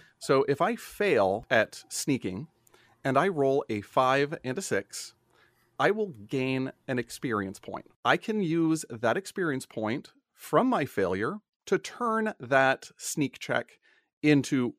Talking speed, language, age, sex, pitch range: 140 wpm, English, 30-49, male, 120-160 Hz